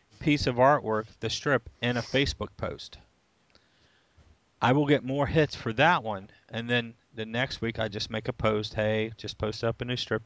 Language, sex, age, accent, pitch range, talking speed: English, male, 40-59, American, 110-130 Hz, 200 wpm